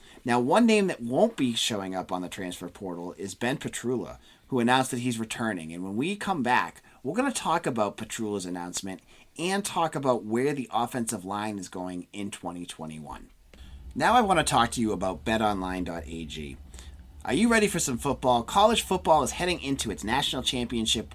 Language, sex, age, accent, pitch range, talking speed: English, male, 30-49, American, 90-135 Hz, 185 wpm